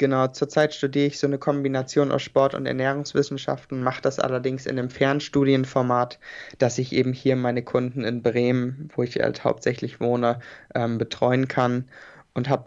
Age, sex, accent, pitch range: 20-39, male, German, 120-135 Hz